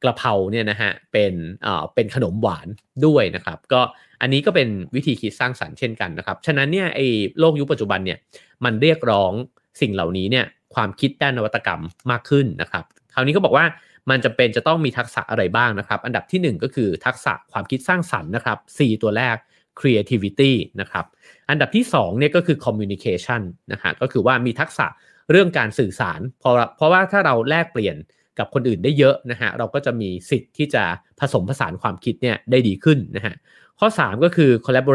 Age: 30-49